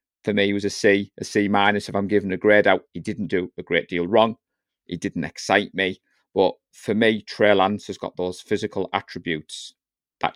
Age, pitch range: 40-59, 90-110 Hz